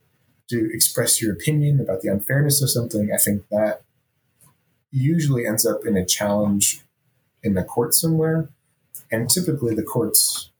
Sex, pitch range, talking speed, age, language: male, 100-130 Hz, 145 wpm, 30-49, English